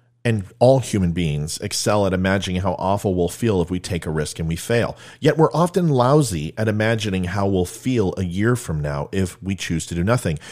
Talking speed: 215 wpm